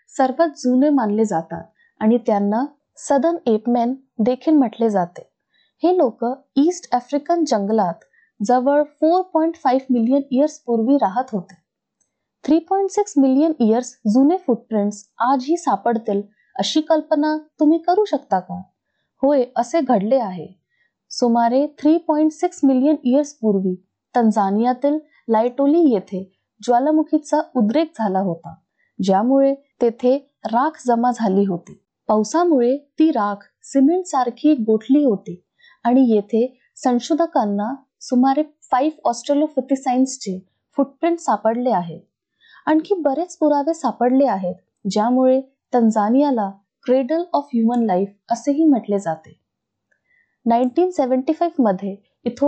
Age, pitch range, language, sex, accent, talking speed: 20-39, 220-300 Hz, Marathi, female, native, 45 wpm